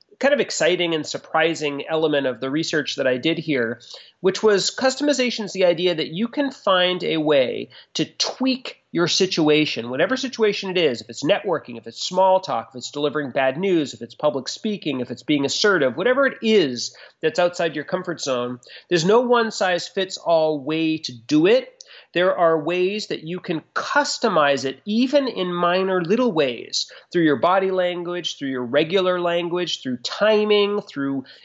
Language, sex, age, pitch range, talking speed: English, male, 30-49, 155-205 Hz, 180 wpm